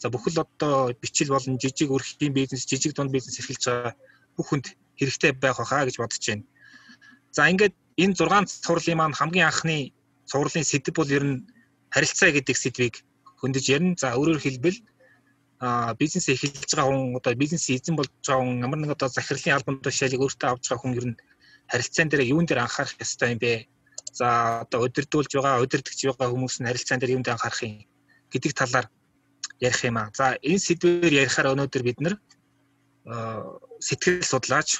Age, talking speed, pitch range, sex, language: 20-39, 50 wpm, 130-155 Hz, male, Russian